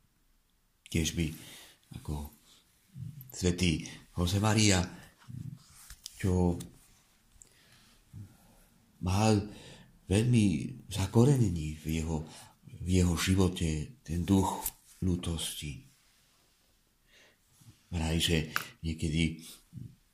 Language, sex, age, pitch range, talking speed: Czech, male, 50-69, 80-115 Hz, 55 wpm